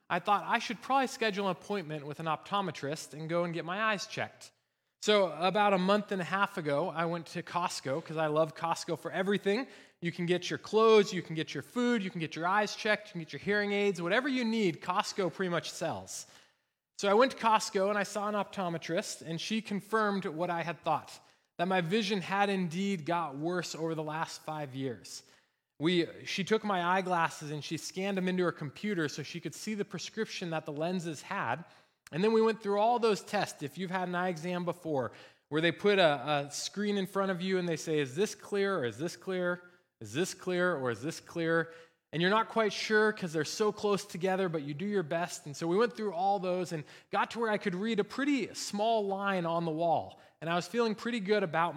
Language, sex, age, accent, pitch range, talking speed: English, male, 20-39, American, 165-205 Hz, 230 wpm